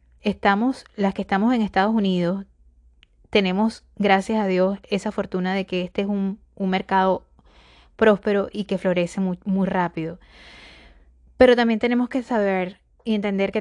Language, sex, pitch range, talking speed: Spanish, female, 175-200 Hz, 155 wpm